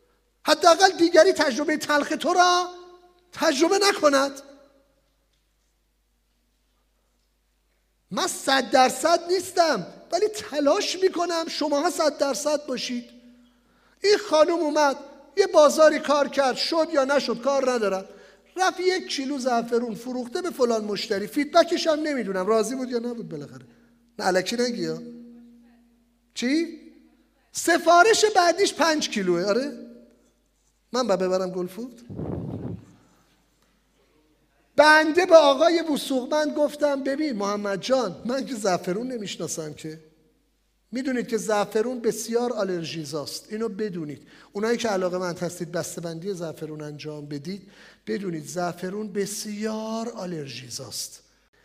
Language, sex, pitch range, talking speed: English, male, 200-300 Hz, 110 wpm